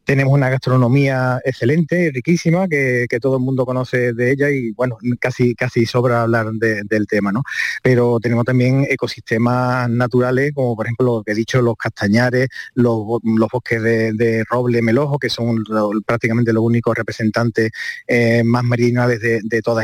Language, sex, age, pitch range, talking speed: Spanish, male, 30-49, 120-135 Hz, 165 wpm